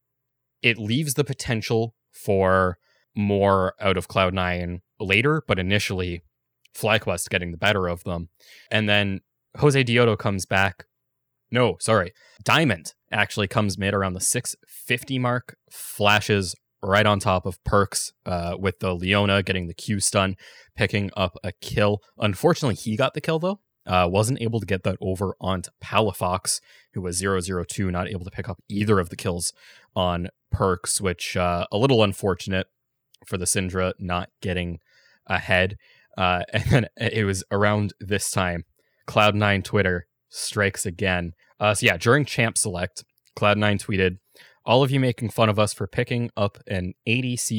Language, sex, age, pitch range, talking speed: English, male, 20-39, 95-115 Hz, 160 wpm